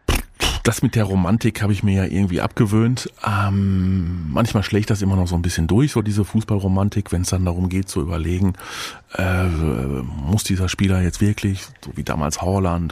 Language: German